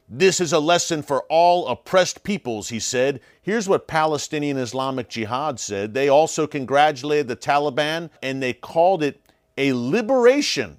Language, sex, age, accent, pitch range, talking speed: English, male, 40-59, American, 120-155 Hz, 150 wpm